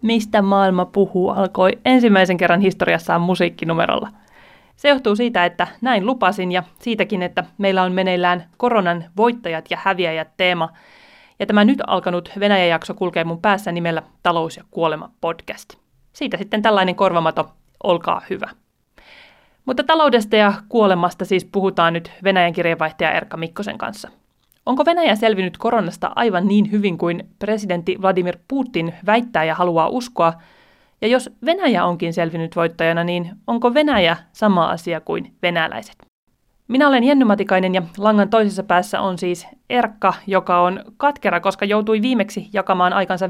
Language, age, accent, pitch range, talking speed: Finnish, 30-49, native, 175-215 Hz, 145 wpm